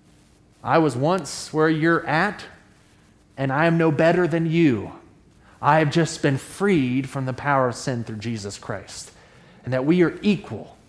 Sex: male